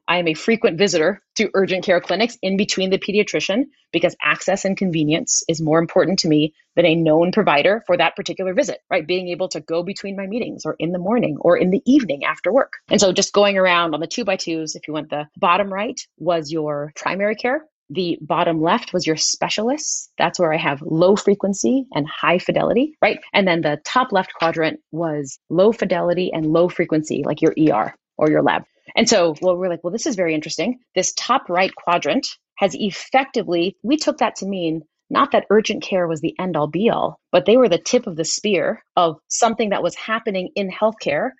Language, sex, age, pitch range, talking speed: English, female, 30-49, 165-220 Hz, 215 wpm